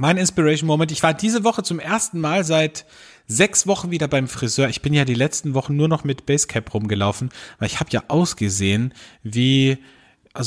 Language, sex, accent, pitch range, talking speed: German, male, German, 130-175 Hz, 190 wpm